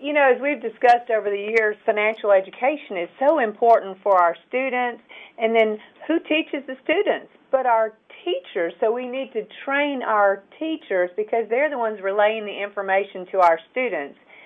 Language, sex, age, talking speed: English, female, 50-69, 175 wpm